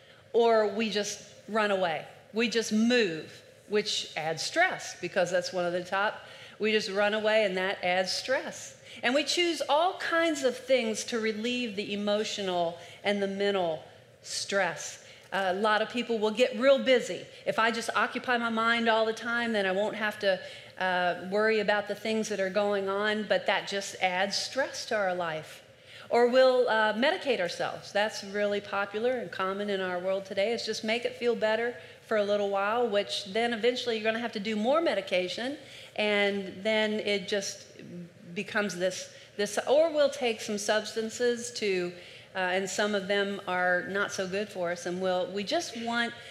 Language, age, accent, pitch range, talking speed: English, 40-59, American, 195-235 Hz, 185 wpm